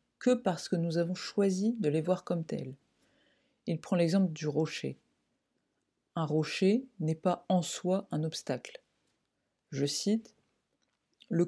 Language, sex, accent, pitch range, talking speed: French, female, French, 155-195 Hz, 140 wpm